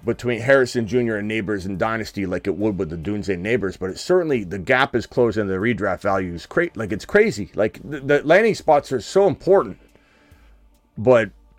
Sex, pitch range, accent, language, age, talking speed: male, 90-120 Hz, American, English, 30-49, 200 wpm